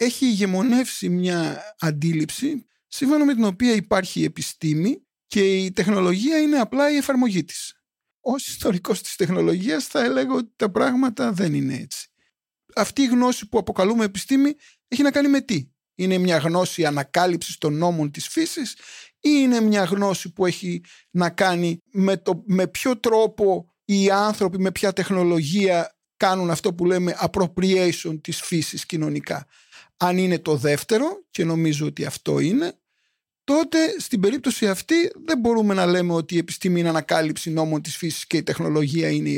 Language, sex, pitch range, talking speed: Greek, male, 170-245 Hz, 160 wpm